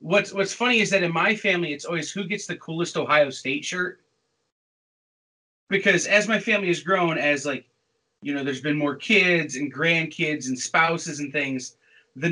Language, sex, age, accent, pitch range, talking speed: English, male, 30-49, American, 150-205 Hz, 185 wpm